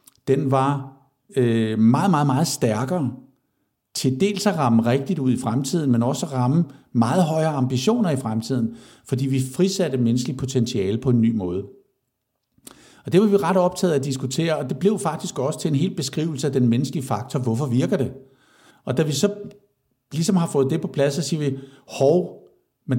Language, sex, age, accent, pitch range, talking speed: Danish, male, 60-79, native, 130-180 Hz, 190 wpm